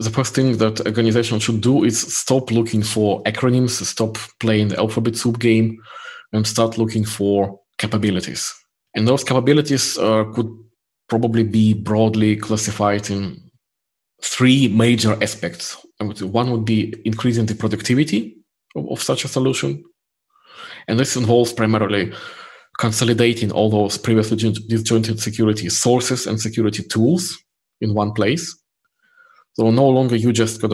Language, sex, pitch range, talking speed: English, male, 105-115 Hz, 135 wpm